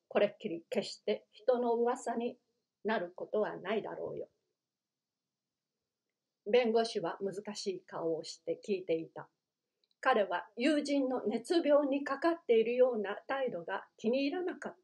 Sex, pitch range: female, 200-275 Hz